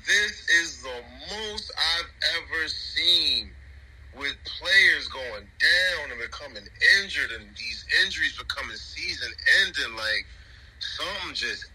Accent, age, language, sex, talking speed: American, 30-49, English, male, 110 wpm